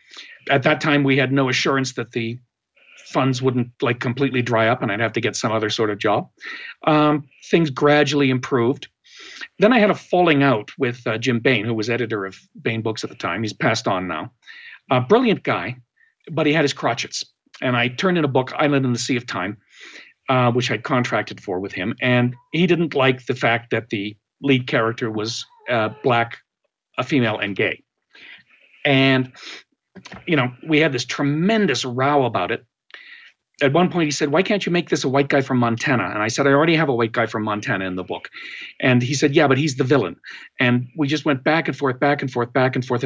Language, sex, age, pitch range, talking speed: English, male, 50-69, 125-150 Hz, 215 wpm